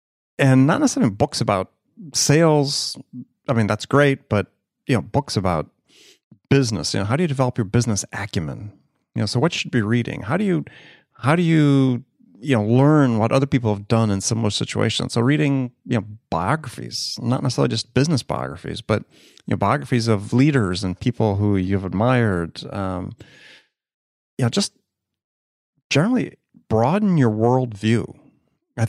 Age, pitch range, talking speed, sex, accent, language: 30-49, 100-135 Hz, 165 wpm, male, American, English